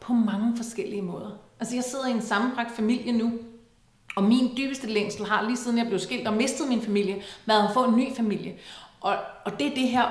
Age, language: 30-49, Danish